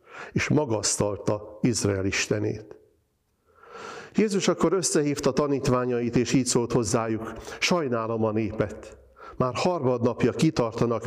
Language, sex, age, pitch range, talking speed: Hungarian, male, 50-69, 110-140 Hz, 90 wpm